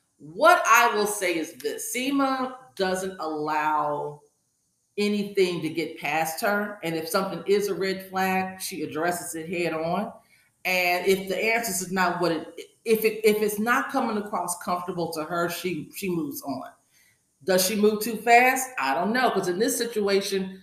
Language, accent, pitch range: English, American, 160-205 Hz